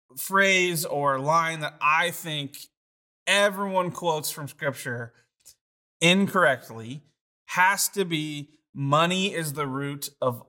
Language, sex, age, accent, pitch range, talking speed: English, male, 30-49, American, 140-185 Hz, 110 wpm